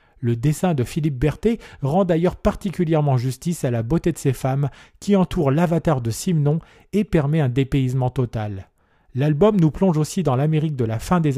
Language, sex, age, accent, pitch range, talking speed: French, male, 40-59, French, 125-170 Hz, 185 wpm